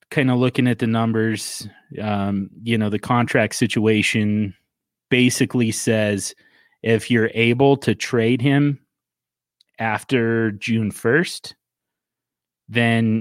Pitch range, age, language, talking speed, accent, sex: 100-120 Hz, 30-49, English, 110 wpm, American, male